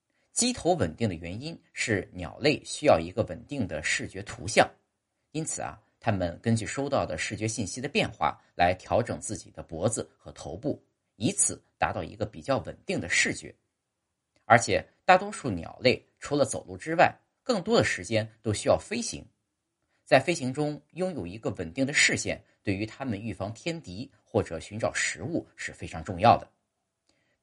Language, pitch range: Chinese, 95-150 Hz